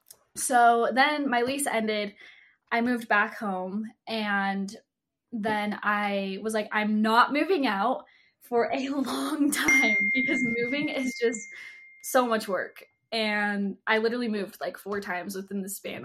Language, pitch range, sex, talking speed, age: English, 205-265 Hz, female, 145 wpm, 10-29